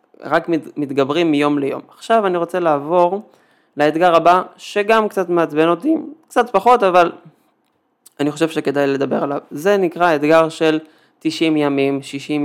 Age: 20-39